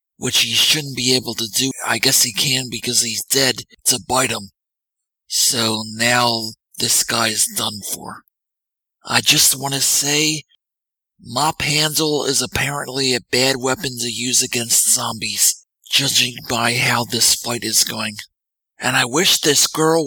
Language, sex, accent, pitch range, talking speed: English, male, American, 115-140 Hz, 155 wpm